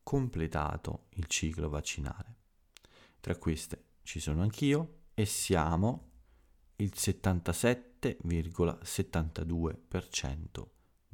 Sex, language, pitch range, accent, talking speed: male, Italian, 80-100 Hz, native, 70 wpm